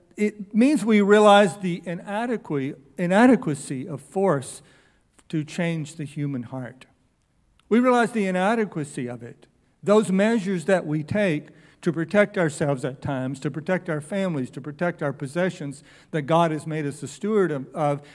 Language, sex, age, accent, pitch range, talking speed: English, male, 60-79, American, 155-200 Hz, 150 wpm